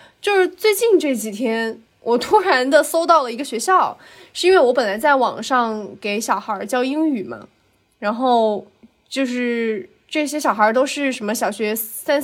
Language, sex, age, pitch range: Chinese, female, 20-39, 225-310 Hz